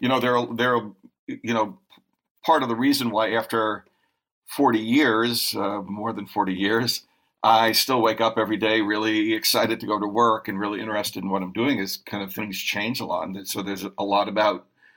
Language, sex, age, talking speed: English, male, 50-69, 205 wpm